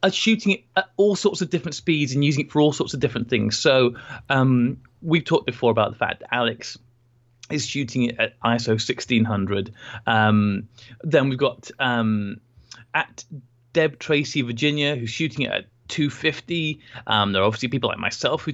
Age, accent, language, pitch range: 20-39, British, English, 115-150 Hz